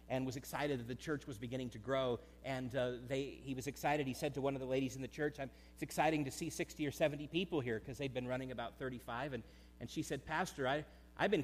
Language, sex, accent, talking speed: English, male, American, 260 wpm